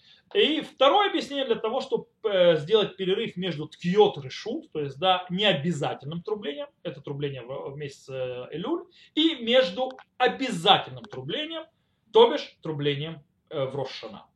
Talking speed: 120 wpm